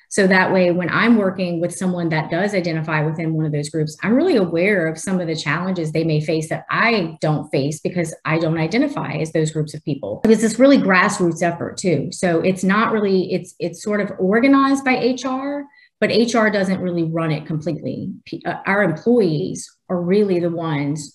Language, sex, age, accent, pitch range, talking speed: English, female, 30-49, American, 160-190 Hz, 200 wpm